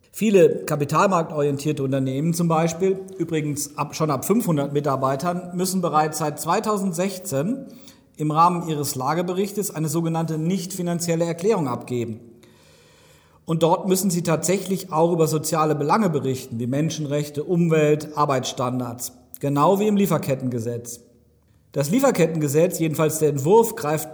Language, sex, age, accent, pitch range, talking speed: German, male, 40-59, German, 135-180 Hz, 115 wpm